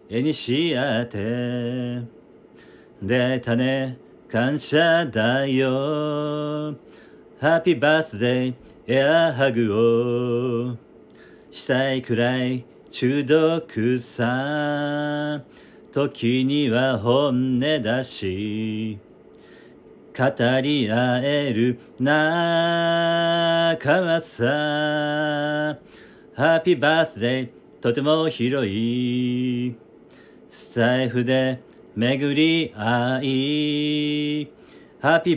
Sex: male